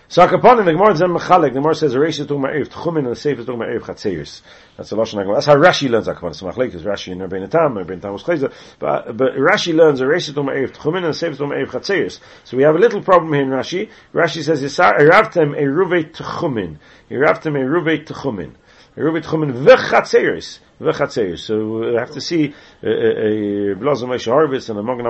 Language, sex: English, male